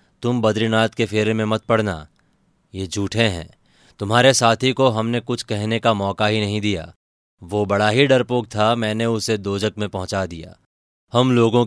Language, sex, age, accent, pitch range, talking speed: Hindi, male, 30-49, native, 95-115 Hz, 175 wpm